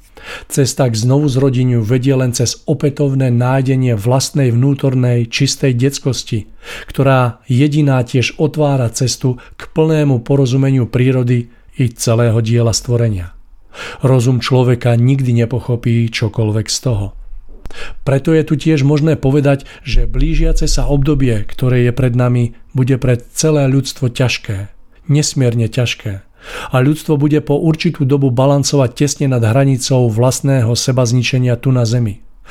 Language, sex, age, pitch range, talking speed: Czech, male, 40-59, 115-140 Hz, 125 wpm